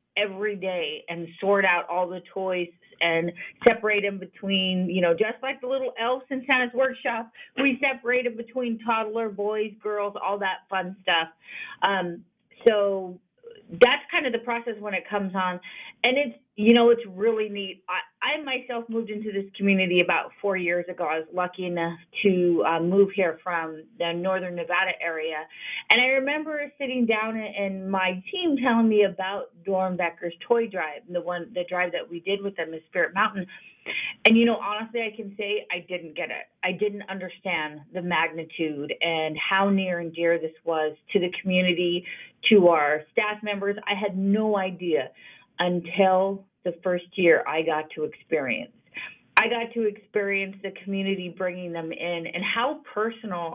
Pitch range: 180-225 Hz